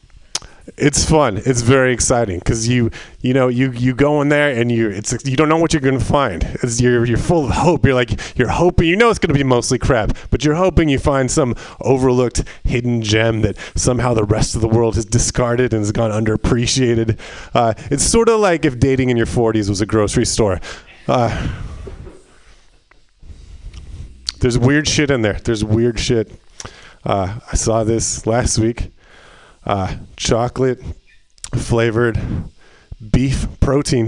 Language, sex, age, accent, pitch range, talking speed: English, male, 30-49, American, 110-145 Hz, 175 wpm